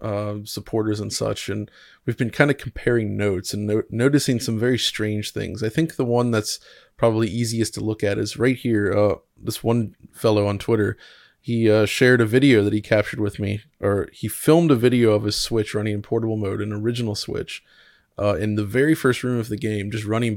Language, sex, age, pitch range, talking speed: English, male, 20-39, 105-120 Hz, 210 wpm